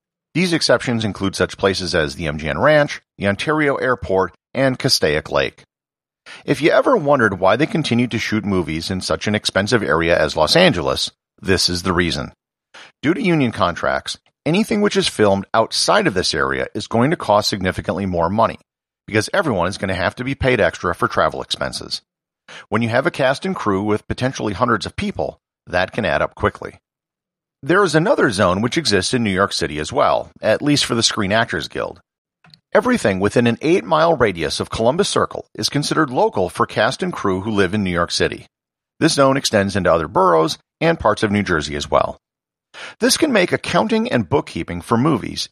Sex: male